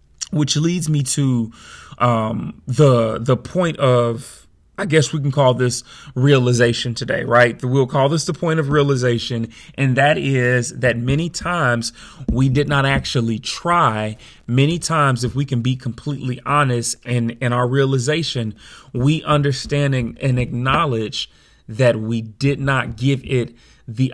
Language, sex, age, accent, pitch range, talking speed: English, male, 30-49, American, 120-145 Hz, 150 wpm